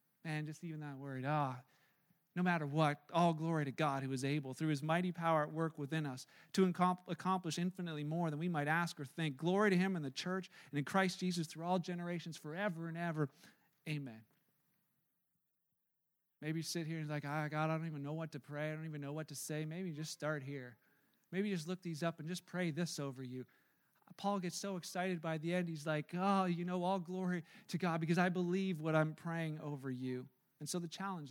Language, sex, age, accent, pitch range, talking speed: English, male, 40-59, American, 150-185 Hz, 225 wpm